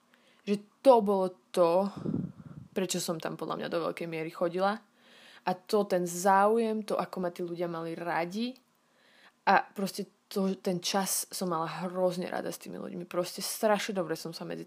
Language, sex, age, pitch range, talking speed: Slovak, female, 20-39, 170-200 Hz, 170 wpm